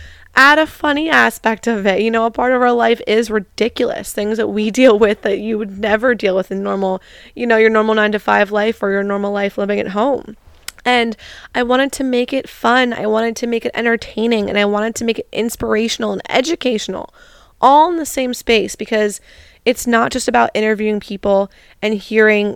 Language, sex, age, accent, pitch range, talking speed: English, female, 20-39, American, 200-235 Hz, 210 wpm